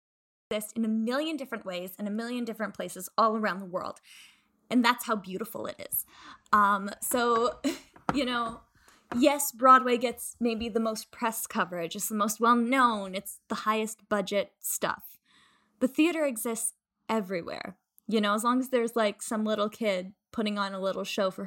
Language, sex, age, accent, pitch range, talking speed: English, female, 10-29, American, 195-245 Hz, 170 wpm